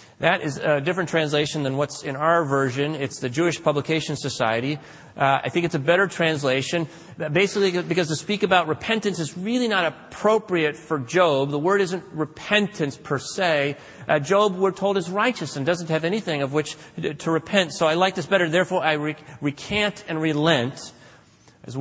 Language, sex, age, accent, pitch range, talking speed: English, male, 30-49, American, 155-215 Hz, 180 wpm